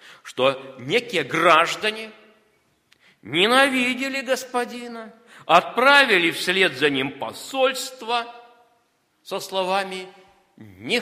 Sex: male